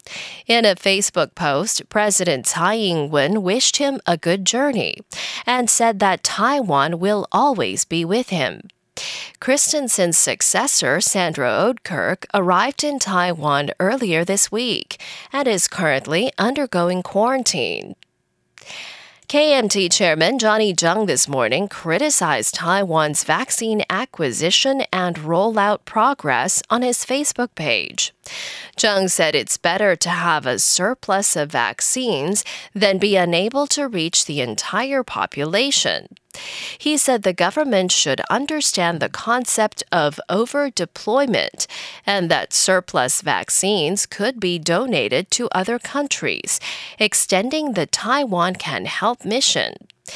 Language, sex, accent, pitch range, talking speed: English, female, American, 180-255 Hz, 115 wpm